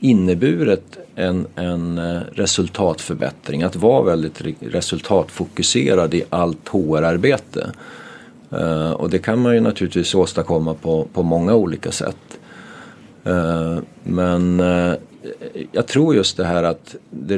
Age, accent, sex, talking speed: 40-59, Swedish, male, 105 wpm